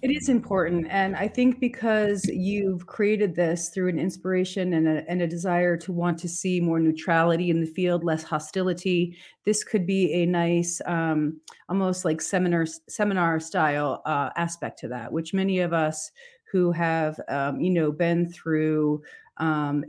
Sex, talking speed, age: female, 170 wpm, 40-59